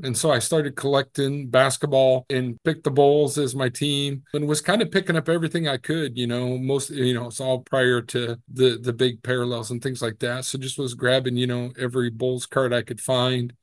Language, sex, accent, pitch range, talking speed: English, male, American, 120-140 Hz, 225 wpm